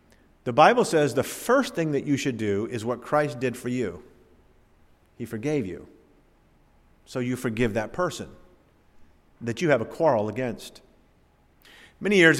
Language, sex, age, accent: English, male, 40-59, American